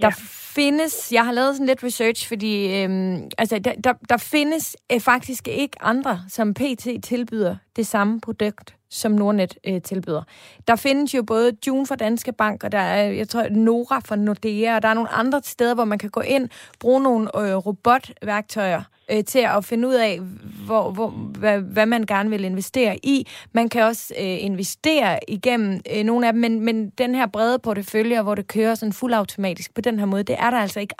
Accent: native